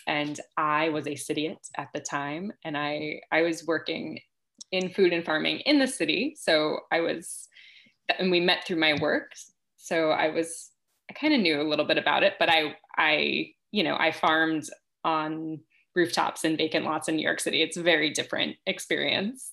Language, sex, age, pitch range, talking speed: English, female, 20-39, 155-205 Hz, 190 wpm